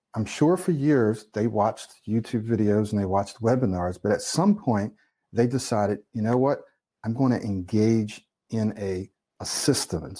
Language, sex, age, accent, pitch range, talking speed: English, male, 50-69, American, 95-125 Hz, 175 wpm